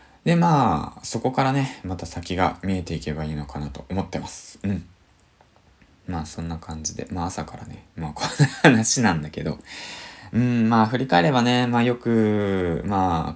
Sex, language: male, Japanese